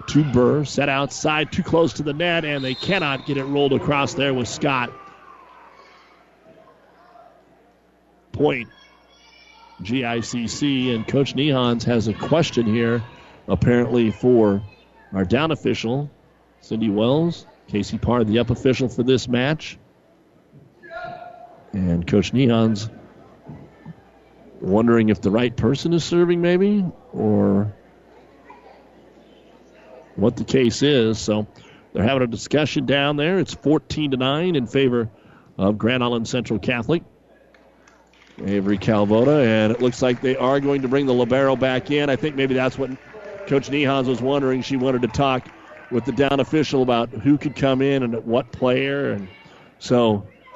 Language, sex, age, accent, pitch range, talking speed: English, male, 40-59, American, 115-145 Hz, 140 wpm